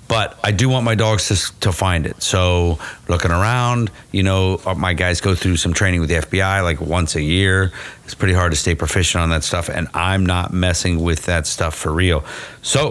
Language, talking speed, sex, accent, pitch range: English, 220 wpm, male, American, 85-105 Hz